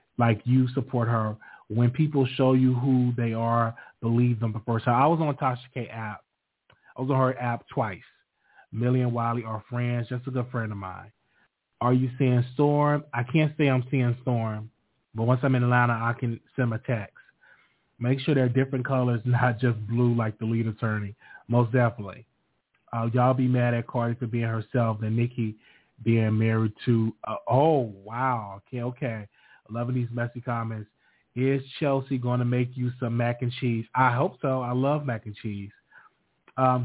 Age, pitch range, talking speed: 30-49, 115-130 Hz, 185 wpm